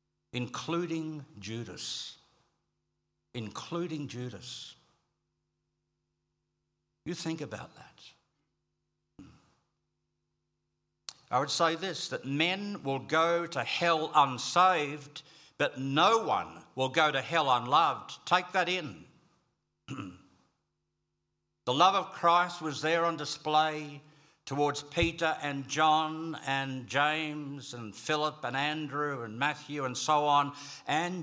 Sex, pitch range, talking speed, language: male, 135-165 Hz, 105 wpm, English